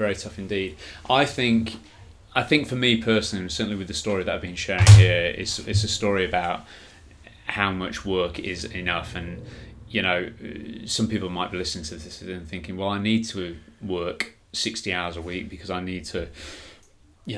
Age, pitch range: 20-39, 90-105 Hz